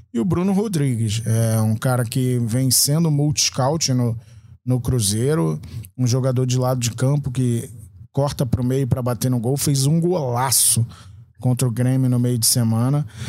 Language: Portuguese